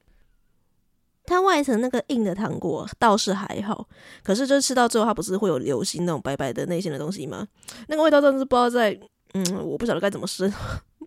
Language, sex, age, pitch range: Chinese, female, 20-39, 190-245 Hz